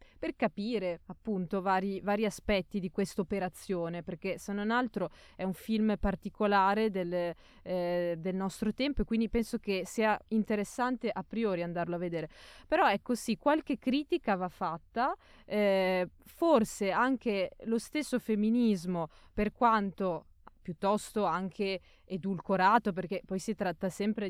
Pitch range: 185-220 Hz